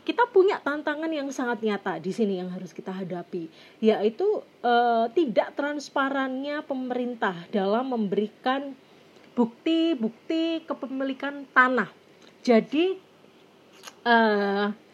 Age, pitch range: 30-49, 210-275 Hz